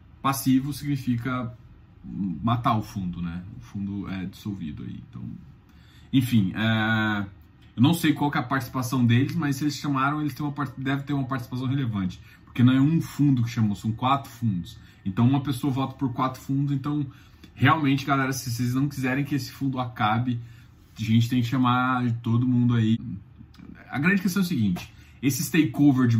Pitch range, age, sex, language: 115-140 Hz, 20-39, male, Portuguese